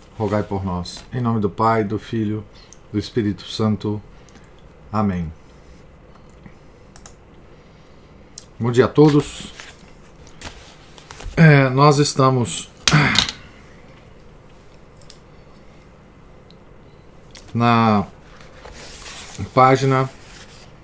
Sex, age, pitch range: male, 40-59, 105-140 Hz